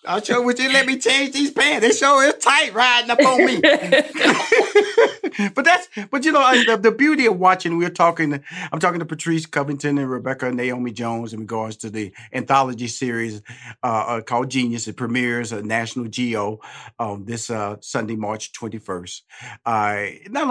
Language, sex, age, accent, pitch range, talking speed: English, male, 40-59, American, 120-180 Hz, 180 wpm